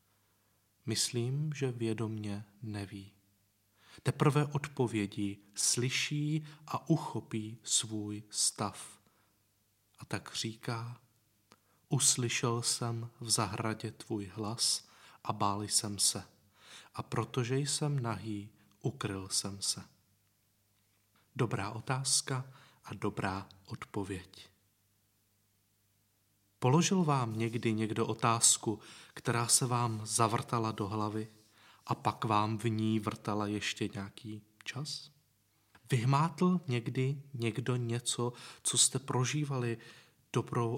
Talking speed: 95 wpm